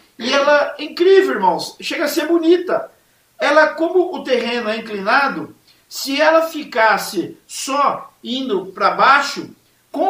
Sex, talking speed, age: male, 130 wpm, 50-69